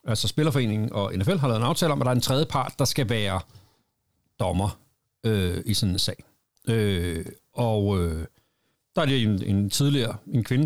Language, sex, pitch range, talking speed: Danish, male, 105-130 Hz, 195 wpm